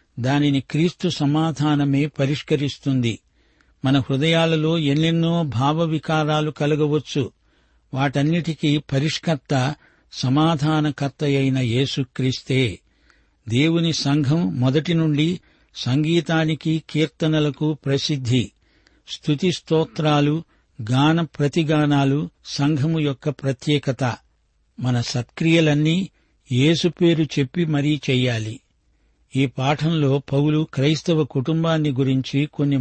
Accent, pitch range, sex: native, 130-155 Hz, male